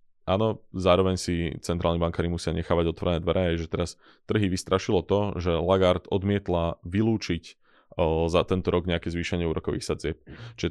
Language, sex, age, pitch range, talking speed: Slovak, male, 20-39, 85-95 Hz, 145 wpm